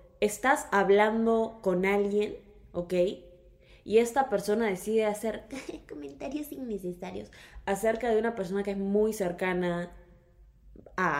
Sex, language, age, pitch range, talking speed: female, Spanish, 20-39, 175-225 Hz, 120 wpm